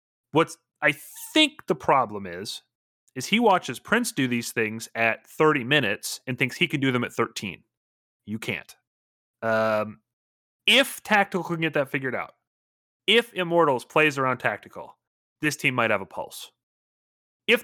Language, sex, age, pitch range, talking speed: English, male, 30-49, 110-150 Hz, 155 wpm